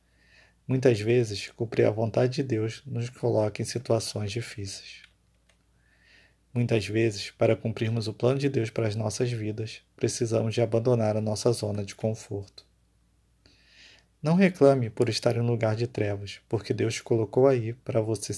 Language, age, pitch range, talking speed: Portuguese, 20-39, 105-125 Hz, 155 wpm